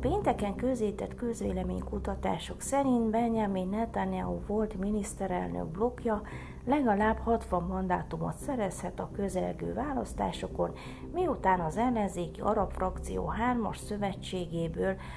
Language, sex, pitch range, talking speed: Hungarian, female, 165-225 Hz, 90 wpm